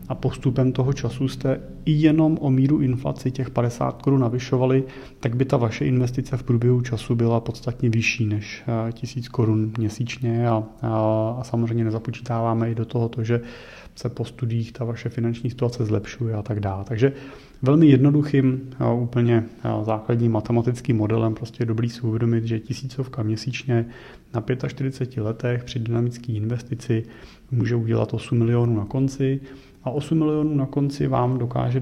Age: 30-49